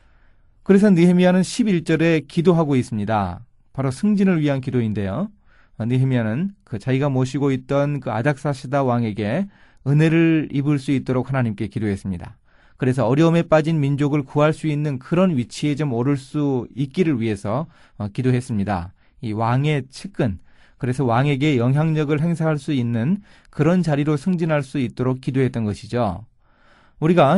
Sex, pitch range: male, 115-160 Hz